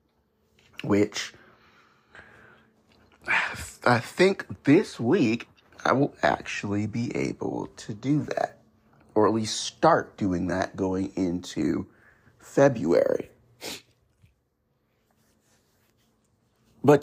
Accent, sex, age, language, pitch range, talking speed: American, male, 50-69, English, 100-125 Hz, 80 wpm